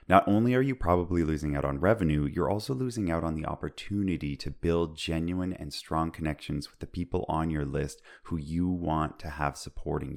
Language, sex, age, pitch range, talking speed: English, male, 30-49, 75-95 Hz, 200 wpm